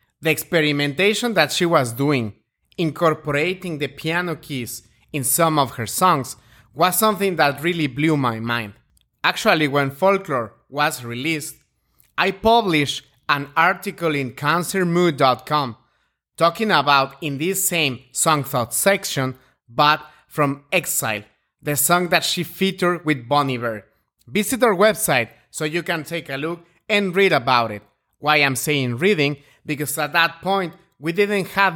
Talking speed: 145 wpm